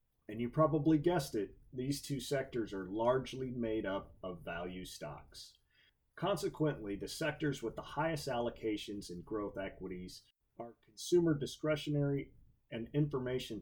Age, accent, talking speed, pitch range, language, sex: 30-49, American, 130 wpm, 100-145 Hz, English, male